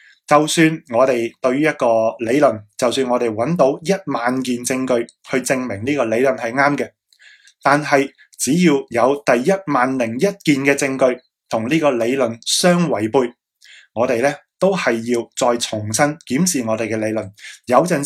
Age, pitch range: 20-39, 120-155 Hz